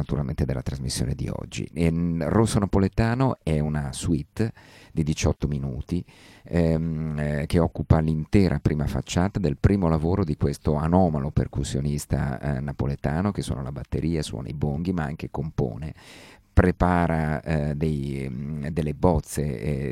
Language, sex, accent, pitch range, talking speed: Italian, male, native, 75-90 Hz, 135 wpm